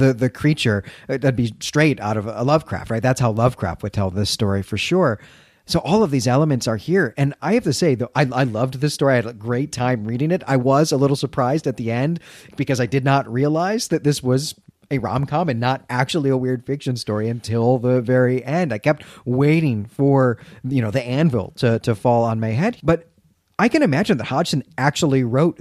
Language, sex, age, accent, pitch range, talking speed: English, male, 40-59, American, 115-145 Hz, 225 wpm